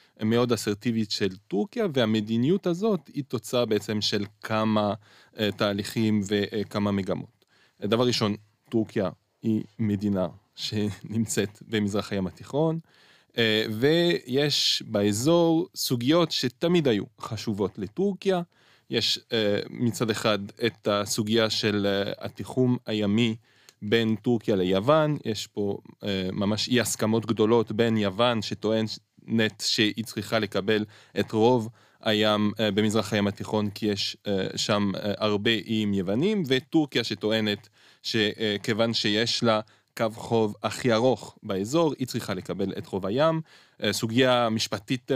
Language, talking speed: Hebrew, 110 wpm